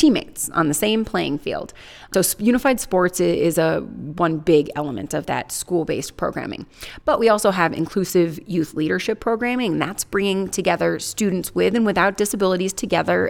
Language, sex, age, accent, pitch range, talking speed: English, female, 30-49, American, 165-200 Hz, 160 wpm